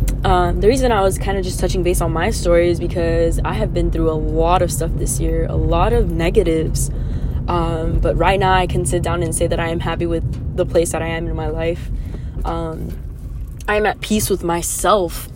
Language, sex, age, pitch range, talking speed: English, female, 20-39, 130-180 Hz, 230 wpm